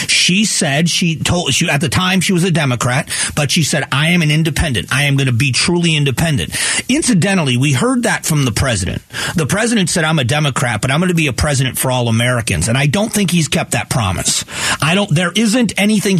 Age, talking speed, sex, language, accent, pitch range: 40-59, 230 wpm, male, English, American, 130-170 Hz